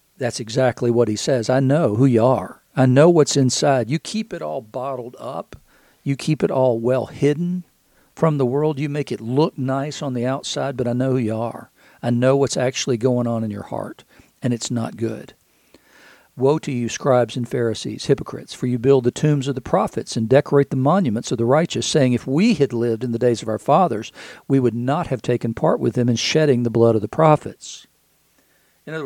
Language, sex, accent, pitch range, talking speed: English, male, American, 115-140 Hz, 220 wpm